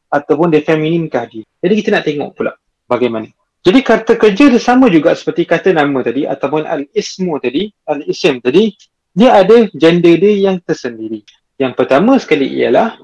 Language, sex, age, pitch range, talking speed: Malay, male, 30-49, 140-205 Hz, 160 wpm